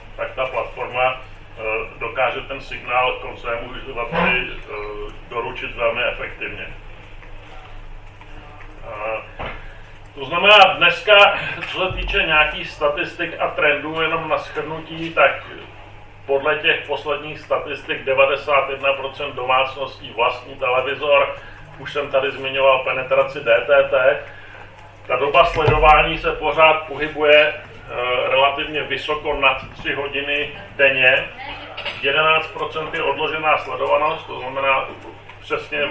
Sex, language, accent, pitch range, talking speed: male, Czech, native, 115-150 Hz, 100 wpm